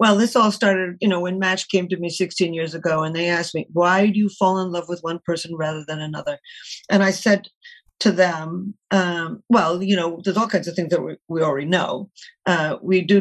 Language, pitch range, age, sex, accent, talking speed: English, 165-205 Hz, 50-69, female, American, 235 wpm